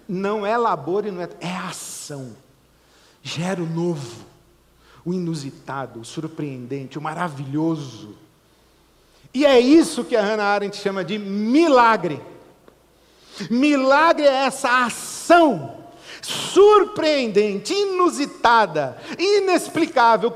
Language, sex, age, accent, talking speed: Portuguese, male, 50-69, Brazilian, 100 wpm